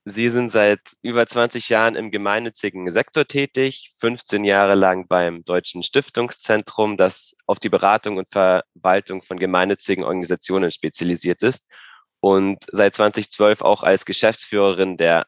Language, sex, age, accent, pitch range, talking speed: German, male, 20-39, German, 95-115 Hz, 135 wpm